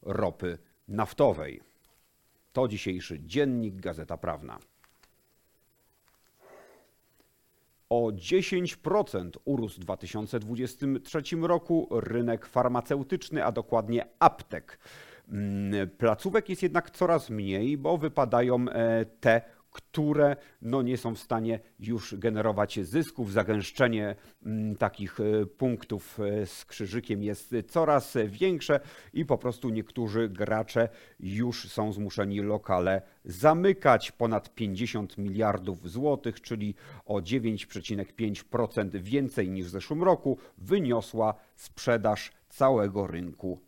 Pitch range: 100-125 Hz